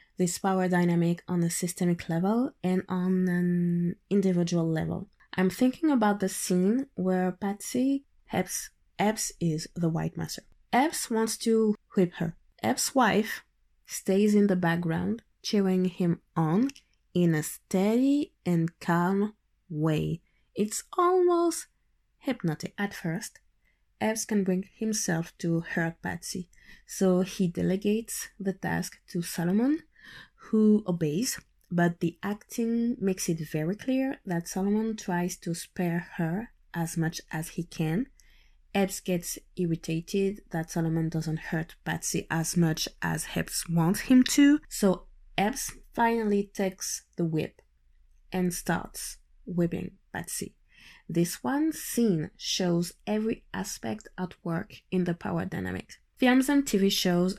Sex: female